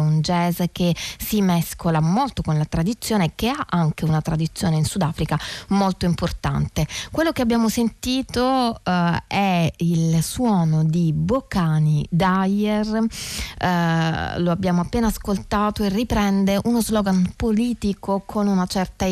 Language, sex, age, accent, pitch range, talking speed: Italian, female, 20-39, native, 165-210 Hz, 135 wpm